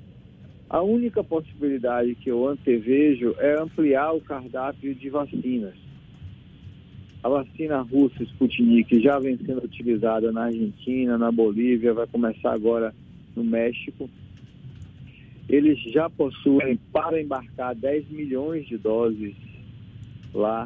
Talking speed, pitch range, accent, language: 115 wpm, 115-145 Hz, Brazilian, Portuguese